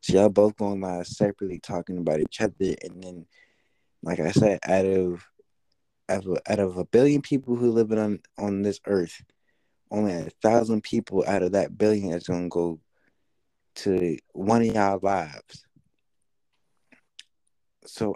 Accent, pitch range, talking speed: American, 95-120 Hz, 160 wpm